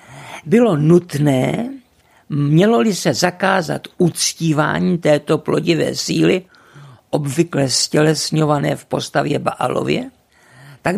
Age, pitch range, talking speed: 50-69, 145-180 Hz, 80 wpm